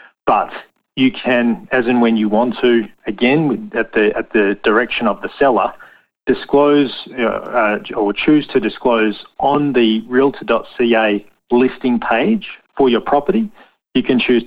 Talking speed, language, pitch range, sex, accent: 150 wpm, English, 105-125 Hz, male, Australian